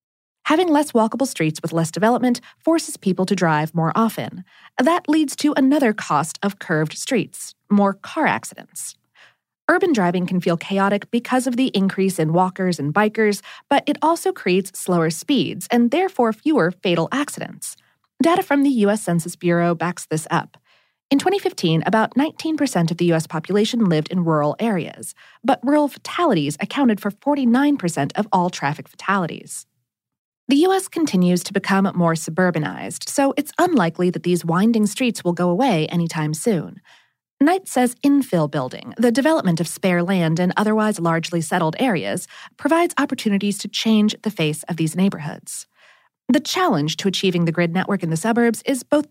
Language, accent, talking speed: English, American, 160 wpm